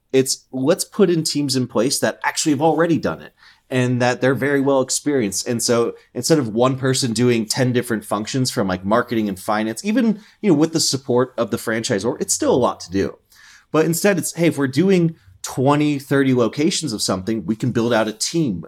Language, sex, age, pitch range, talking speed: English, male, 30-49, 110-145 Hz, 220 wpm